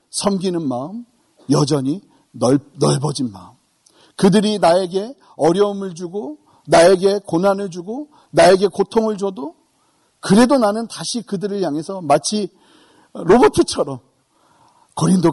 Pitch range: 185-250 Hz